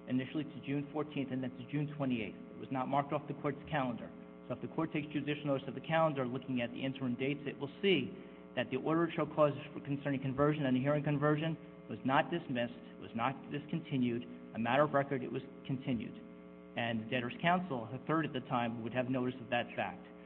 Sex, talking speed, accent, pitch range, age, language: male, 215 wpm, American, 120-145 Hz, 40-59, English